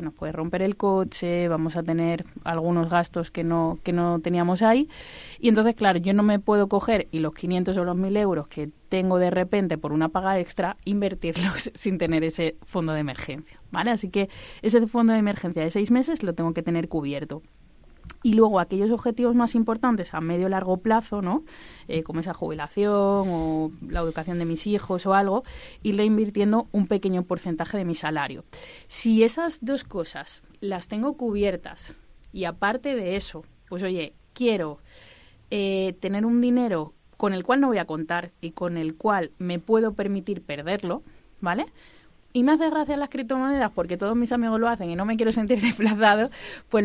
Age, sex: 20-39, female